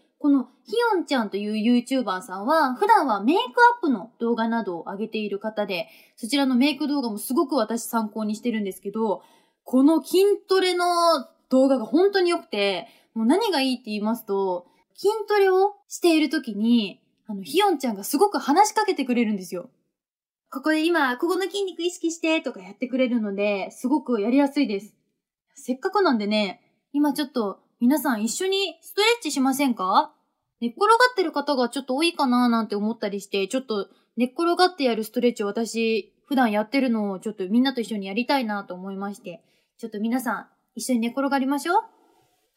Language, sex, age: Japanese, female, 20-39